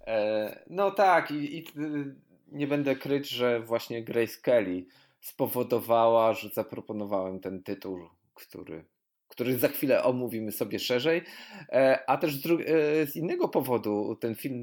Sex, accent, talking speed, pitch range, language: male, native, 125 wpm, 115-140 Hz, Polish